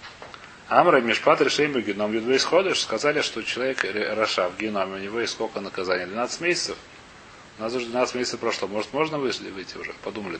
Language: Russian